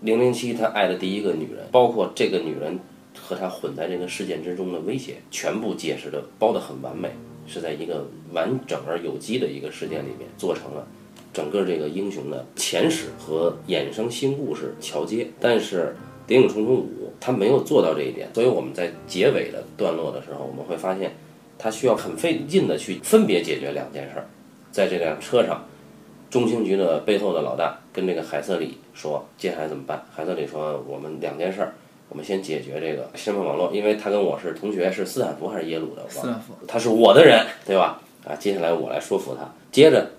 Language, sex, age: Chinese, male, 30-49